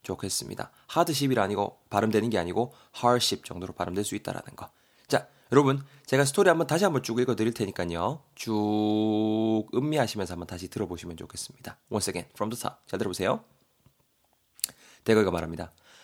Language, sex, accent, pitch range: Korean, male, native, 95-125 Hz